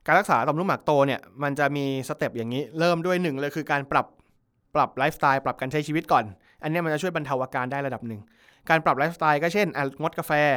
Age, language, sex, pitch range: 20-39, Thai, male, 125-160 Hz